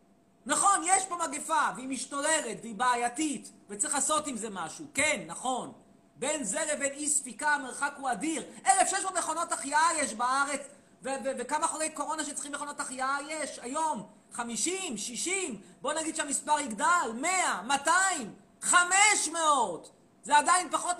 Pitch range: 230-310 Hz